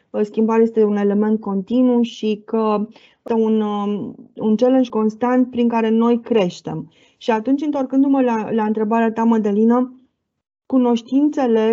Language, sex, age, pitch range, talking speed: Romanian, female, 20-39, 225-265 Hz, 130 wpm